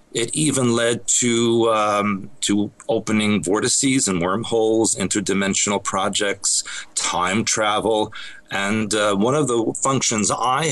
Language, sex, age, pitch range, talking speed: English, male, 40-59, 100-115 Hz, 120 wpm